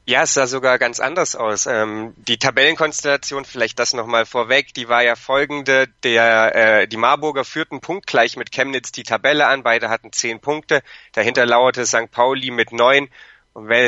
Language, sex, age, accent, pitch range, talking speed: German, male, 30-49, German, 115-140 Hz, 175 wpm